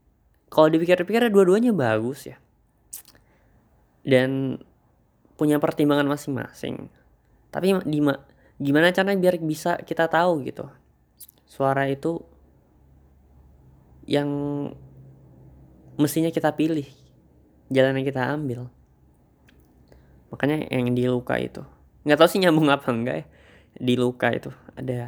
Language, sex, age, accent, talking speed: Indonesian, female, 20-39, native, 105 wpm